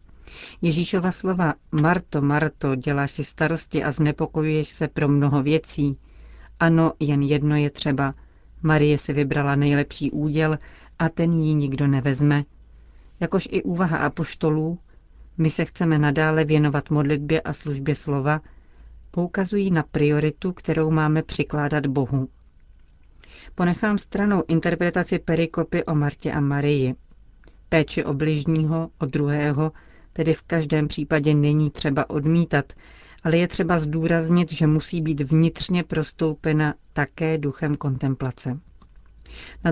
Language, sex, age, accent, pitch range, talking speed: Czech, female, 40-59, native, 145-165 Hz, 120 wpm